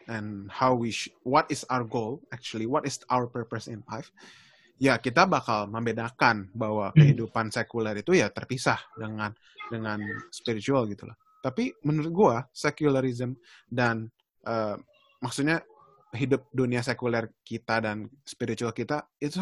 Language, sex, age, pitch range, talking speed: Indonesian, male, 20-39, 115-140 Hz, 135 wpm